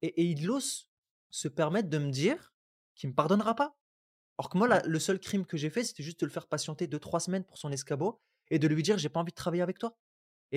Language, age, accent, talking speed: French, 20-39, French, 265 wpm